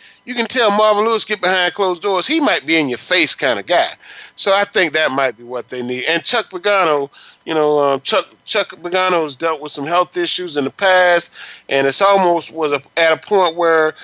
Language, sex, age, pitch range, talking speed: English, male, 30-49, 135-185 Hz, 230 wpm